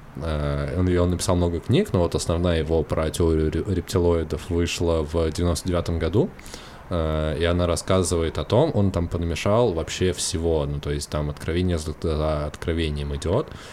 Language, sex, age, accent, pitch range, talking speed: Russian, male, 20-39, native, 80-95 Hz, 145 wpm